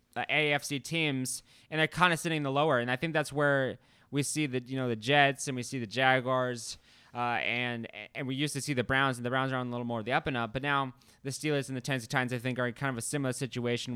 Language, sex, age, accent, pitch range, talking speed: English, male, 20-39, American, 125-145 Hz, 290 wpm